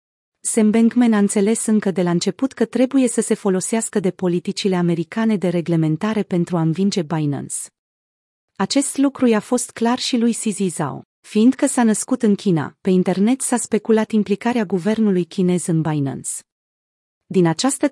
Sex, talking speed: female, 150 wpm